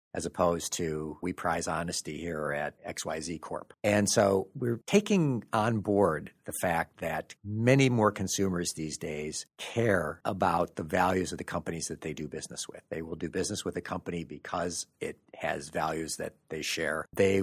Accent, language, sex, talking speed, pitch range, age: American, English, male, 175 wpm, 85-120 Hz, 50-69